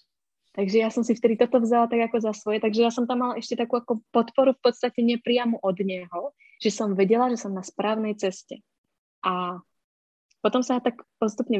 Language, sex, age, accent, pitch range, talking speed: Czech, female, 20-39, native, 190-225 Hz, 195 wpm